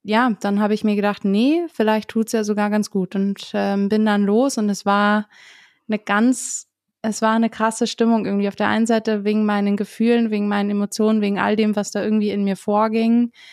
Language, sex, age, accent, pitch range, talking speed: German, female, 20-39, German, 200-225 Hz, 215 wpm